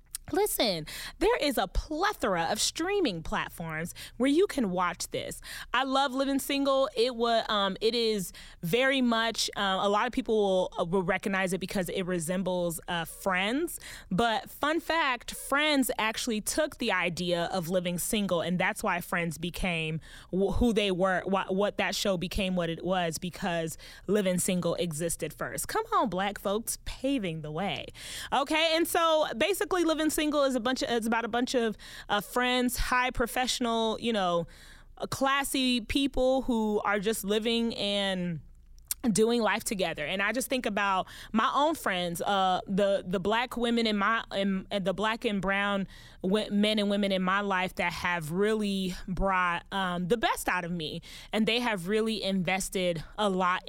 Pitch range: 185-245 Hz